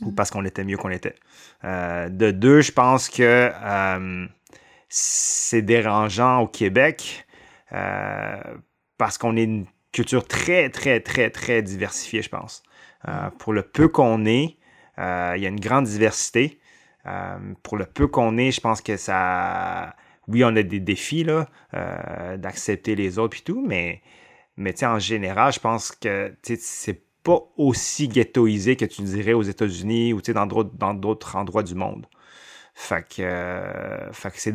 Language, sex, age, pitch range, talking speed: French, male, 30-49, 100-115 Hz, 165 wpm